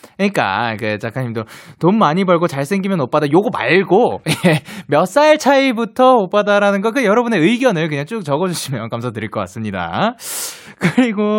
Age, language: 20-39, Korean